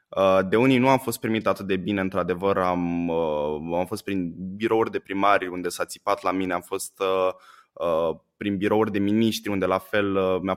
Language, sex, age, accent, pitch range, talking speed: Romanian, male, 20-39, native, 95-125 Hz, 205 wpm